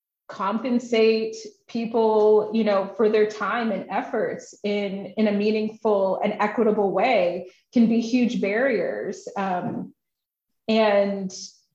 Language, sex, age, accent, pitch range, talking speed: English, female, 30-49, American, 190-220 Hz, 110 wpm